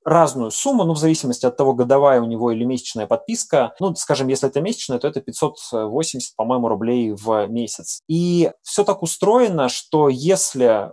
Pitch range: 125-165 Hz